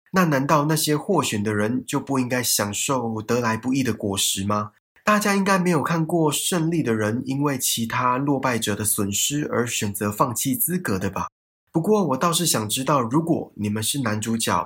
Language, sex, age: Chinese, male, 20-39